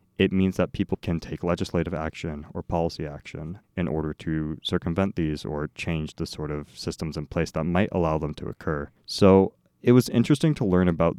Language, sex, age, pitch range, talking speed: English, male, 30-49, 75-100 Hz, 200 wpm